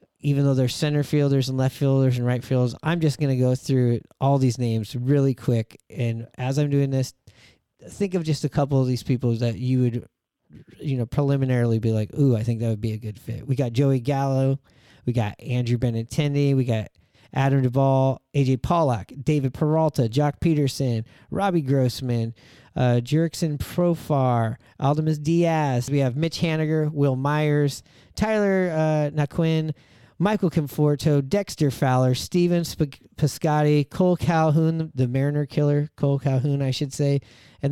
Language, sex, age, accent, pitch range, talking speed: English, male, 30-49, American, 125-155 Hz, 165 wpm